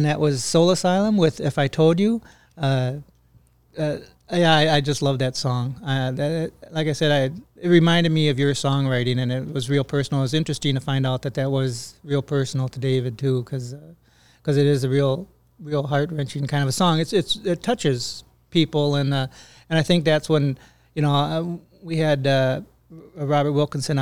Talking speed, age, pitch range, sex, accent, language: 210 wpm, 30-49, 135-155 Hz, male, American, English